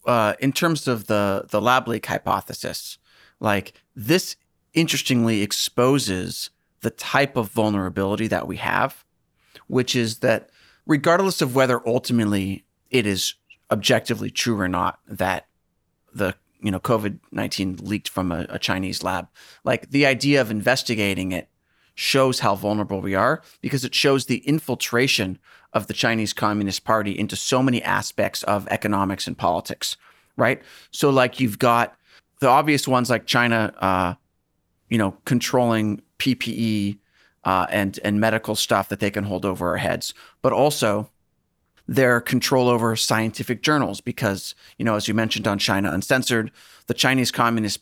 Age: 30-49